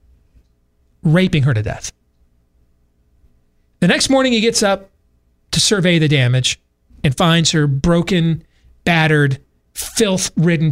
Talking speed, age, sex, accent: 120 wpm, 40-59, male, American